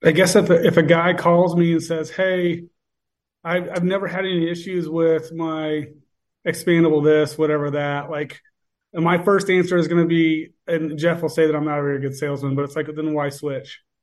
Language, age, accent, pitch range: English, 30-49, American, 145-175 Hz